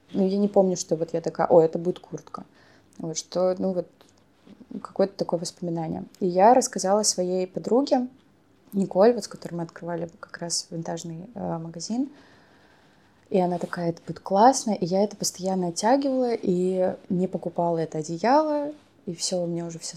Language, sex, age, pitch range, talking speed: Russian, female, 20-39, 170-195 Hz, 170 wpm